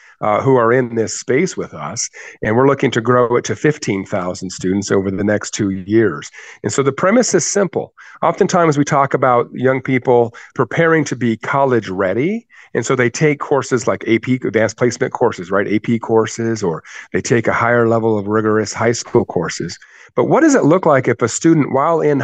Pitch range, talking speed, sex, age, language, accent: 115-150 Hz, 200 wpm, male, 40-59, English, American